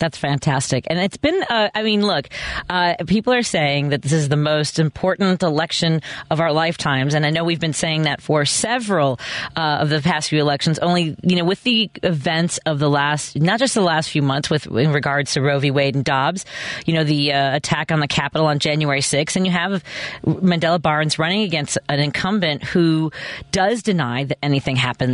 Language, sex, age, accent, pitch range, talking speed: English, female, 40-59, American, 150-185 Hz, 210 wpm